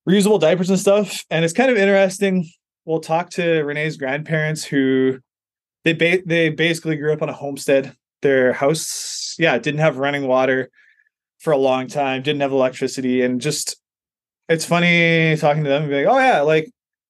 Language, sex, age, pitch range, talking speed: English, male, 20-39, 135-165 Hz, 175 wpm